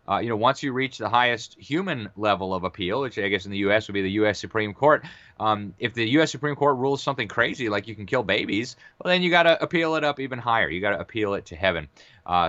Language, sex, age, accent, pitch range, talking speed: English, male, 30-49, American, 90-110 Hz, 260 wpm